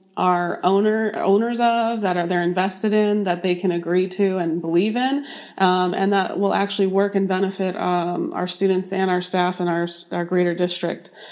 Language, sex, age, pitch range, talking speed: English, female, 30-49, 185-210 Hz, 190 wpm